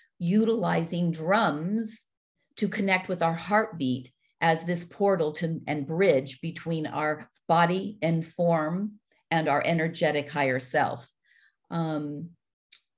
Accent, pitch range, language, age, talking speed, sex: American, 150-180 Hz, English, 50-69, 110 wpm, female